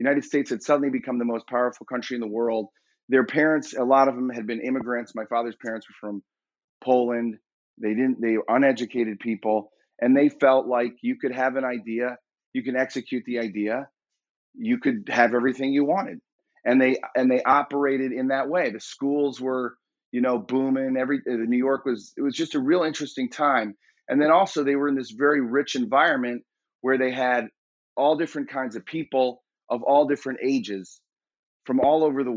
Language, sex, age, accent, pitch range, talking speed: English, male, 30-49, American, 115-140 Hz, 195 wpm